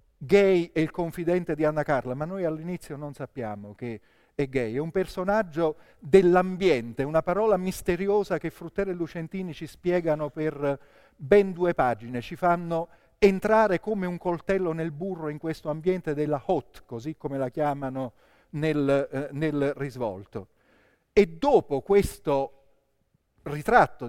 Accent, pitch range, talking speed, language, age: native, 145-195 Hz, 140 wpm, Italian, 40-59